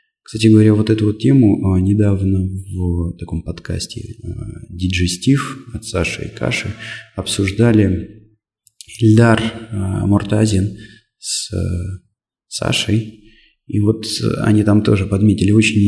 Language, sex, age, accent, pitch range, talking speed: Russian, male, 20-39, native, 95-110 Hz, 100 wpm